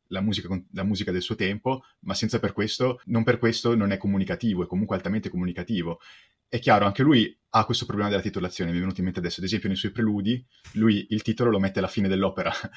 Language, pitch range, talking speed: Italian, 95-120 Hz, 225 wpm